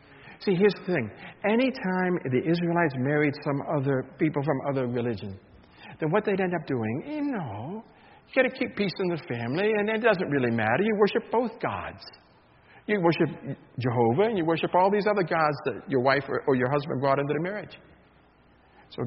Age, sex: 60-79, male